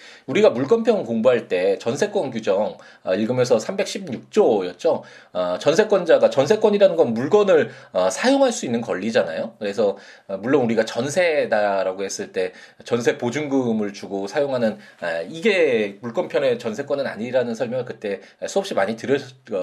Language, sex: Korean, male